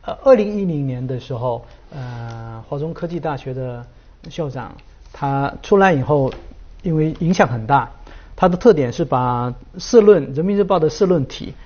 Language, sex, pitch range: Chinese, male, 130-180 Hz